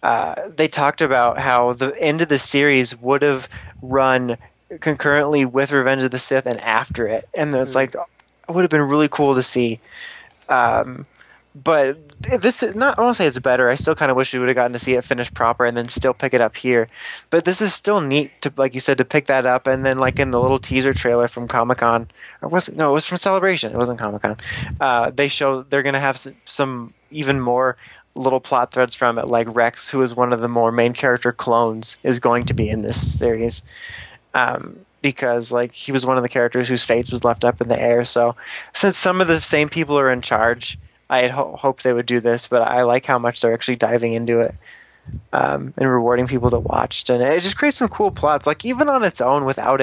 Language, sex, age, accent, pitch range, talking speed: English, male, 20-39, American, 120-140 Hz, 235 wpm